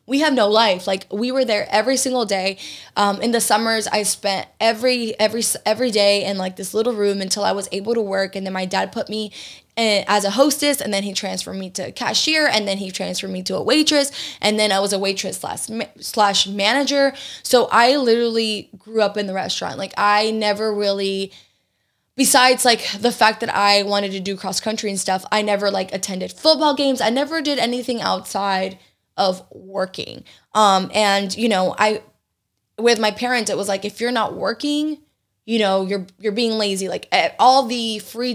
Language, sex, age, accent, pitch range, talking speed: English, female, 10-29, American, 195-235 Hz, 205 wpm